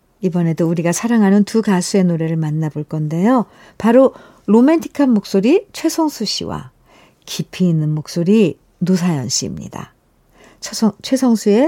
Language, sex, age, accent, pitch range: Korean, female, 50-69, native, 165-225 Hz